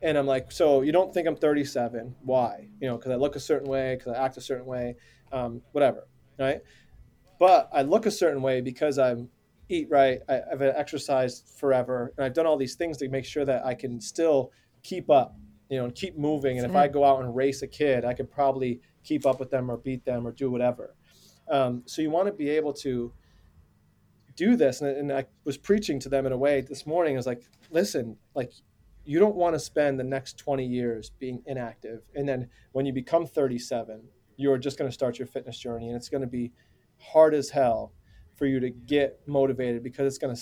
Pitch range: 125-145 Hz